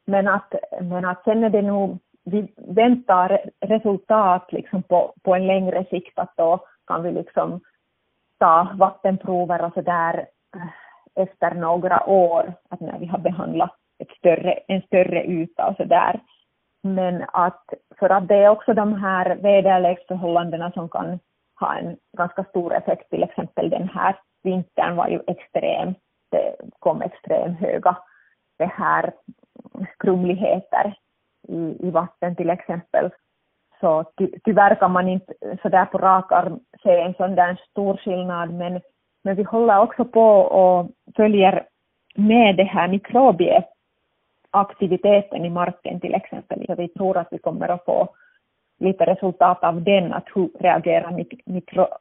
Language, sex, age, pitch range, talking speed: Swedish, female, 30-49, 175-200 Hz, 145 wpm